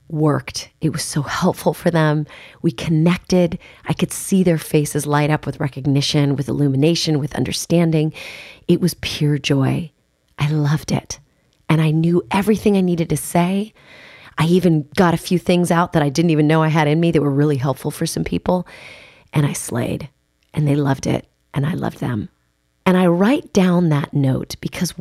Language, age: English, 30-49